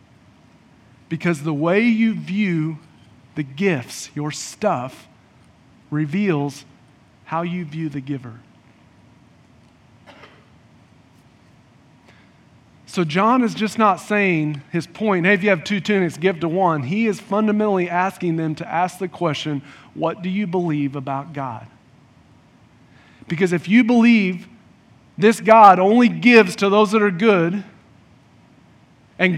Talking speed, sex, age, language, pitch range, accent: 125 wpm, male, 40-59, English, 155-215 Hz, American